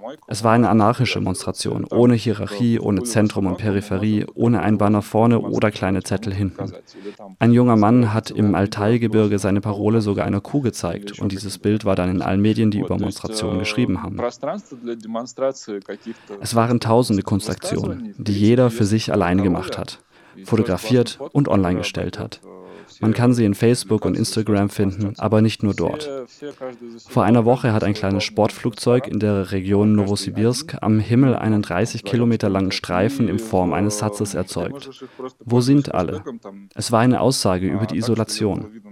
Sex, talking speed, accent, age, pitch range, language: male, 160 wpm, German, 30-49, 100-115 Hz, German